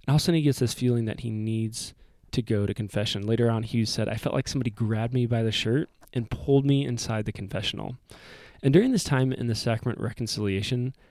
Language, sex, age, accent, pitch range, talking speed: English, male, 20-39, American, 110-130 Hz, 230 wpm